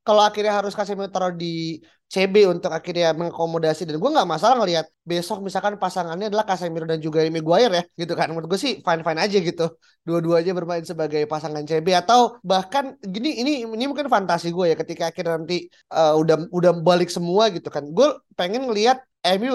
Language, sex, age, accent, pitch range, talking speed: Indonesian, male, 20-39, native, 160-205 Hz, 185 wpm